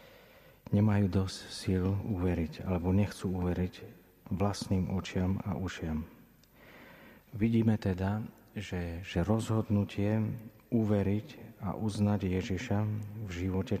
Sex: male